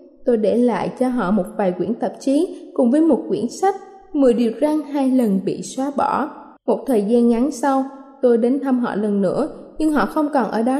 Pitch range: 245-290 Hz